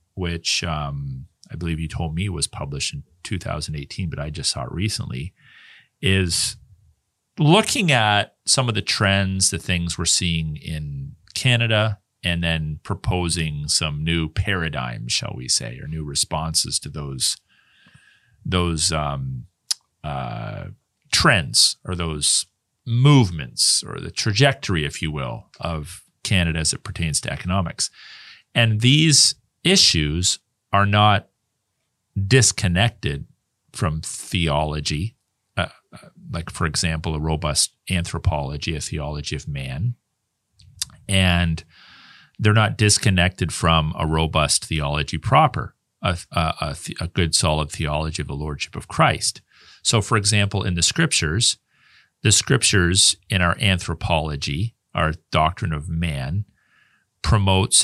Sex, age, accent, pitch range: male, 40-59, American, 80-110 Hz